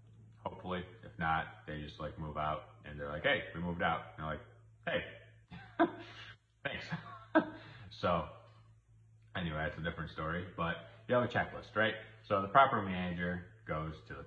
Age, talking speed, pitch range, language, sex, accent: 30-49, 165 wpm, 80-110 Hz, English, male, American